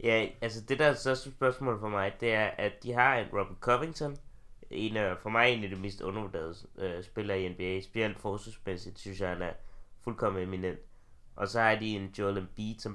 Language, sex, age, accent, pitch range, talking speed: Danish, male, 20-39, native, 95-110 Hz, 210 wpm